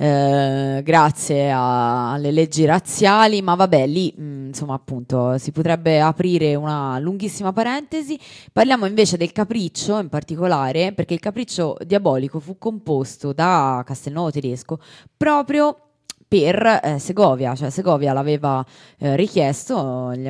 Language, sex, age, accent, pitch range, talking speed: Italian, female, 20-39, native, 135-175 Hz, 125 wpm